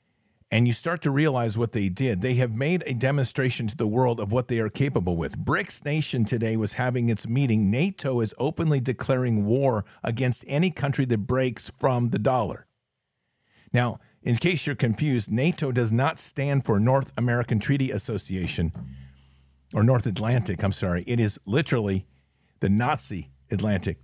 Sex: male